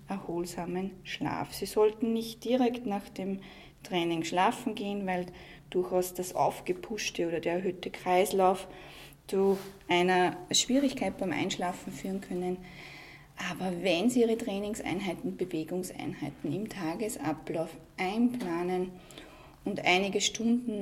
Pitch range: 170-210 Hz